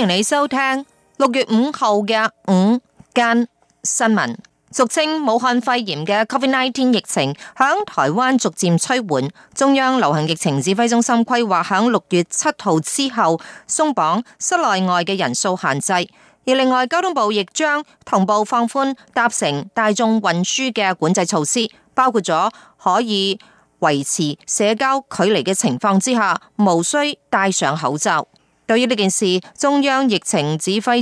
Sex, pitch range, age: female, 185-250 Hz, 30-49